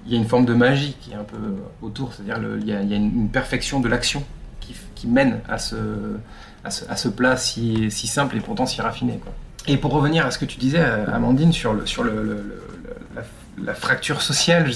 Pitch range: 110-140 Hz